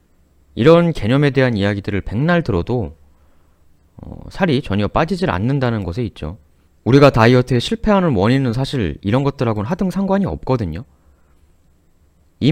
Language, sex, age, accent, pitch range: Korean, male, 30-49, native, 80-130 Hz